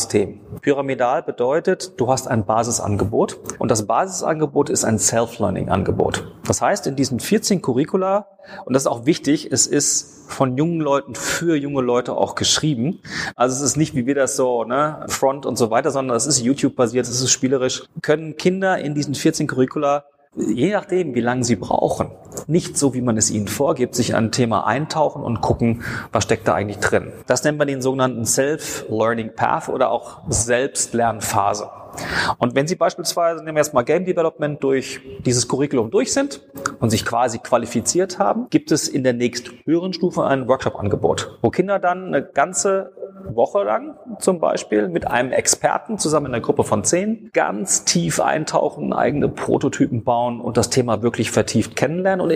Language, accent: German, German